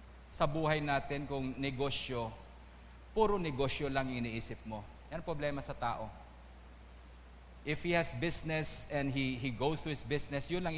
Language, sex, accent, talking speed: English, male, Filipino, 150 wpm